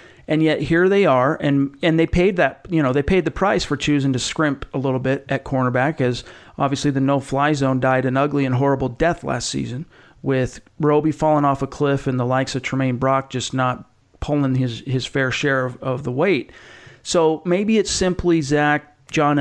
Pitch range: 130-160 Hz